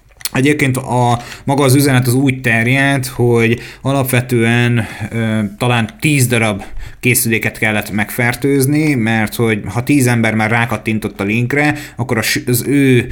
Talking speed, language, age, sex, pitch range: 135 wpm, Hungarian, 30-49, male, 105-125 Hz